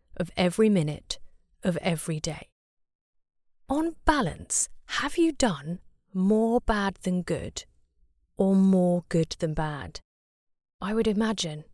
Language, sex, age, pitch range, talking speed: English, female, 30-49, 165-230 Hz, 120 wpm